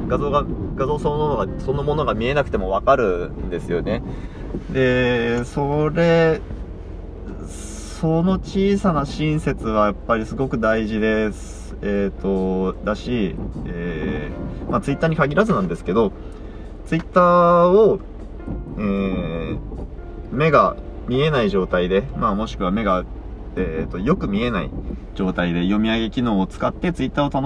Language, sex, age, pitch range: Japanese, male, 20-39, 85-135 Hz